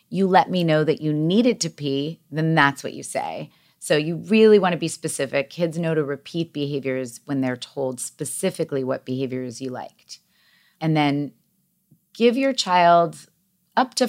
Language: English